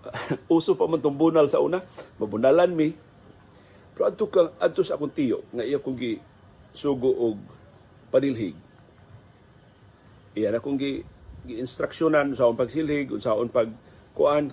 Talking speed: 105 wpm